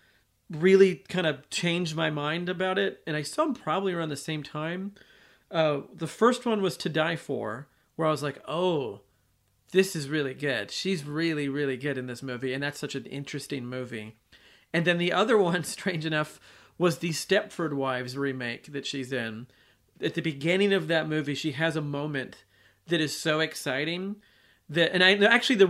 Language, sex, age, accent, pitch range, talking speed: English, male, 40-59, American, 130-165 Hz, 190 wpm